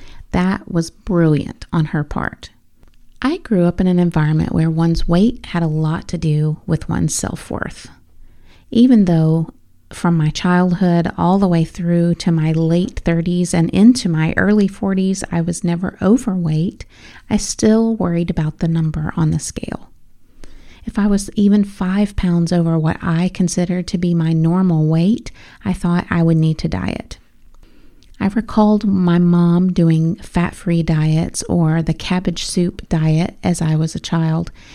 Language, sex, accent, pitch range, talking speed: English, female, American, 165-195 Hz, 160 wpm